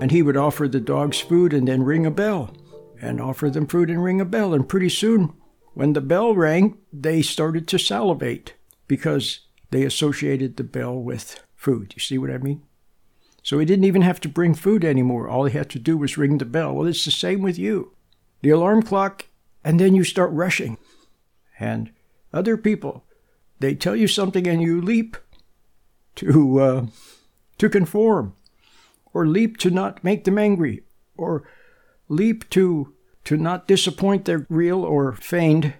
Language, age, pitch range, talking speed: English, 60-79, 135-180 Hz, 175 wpm